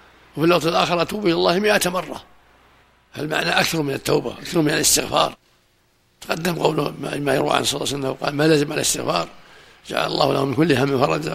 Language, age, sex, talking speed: Arabic, 60-79, male, 190 wpm